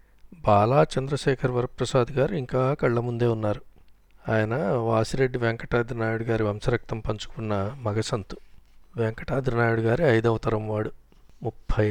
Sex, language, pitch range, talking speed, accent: male, Telugu, 110-125 Hz, 105 wpm, native